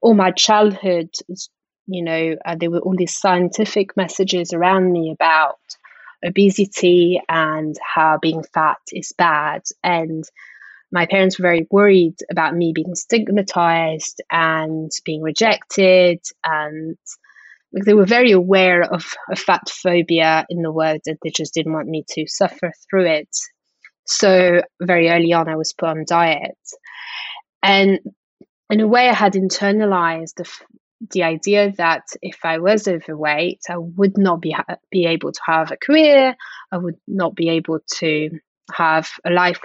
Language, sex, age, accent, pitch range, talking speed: English, female, 20-39, British, 165-195 Hz, 155 wpm